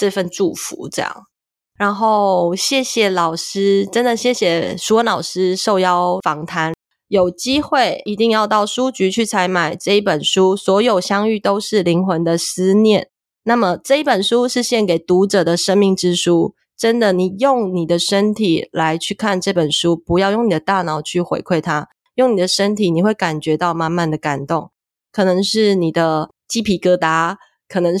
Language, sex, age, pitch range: Chinese, female, 20-39, 170-210 Hz